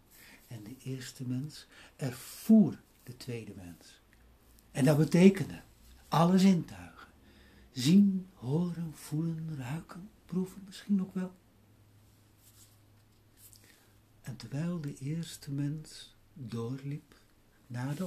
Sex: male